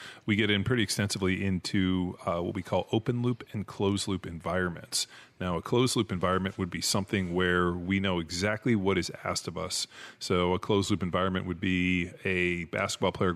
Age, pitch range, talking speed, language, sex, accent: 30-49, 90-100 Hz, 175 wpm, English, male, American